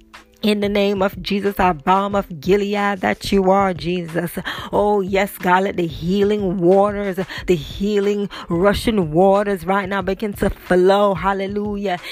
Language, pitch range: English, 185-205 Hz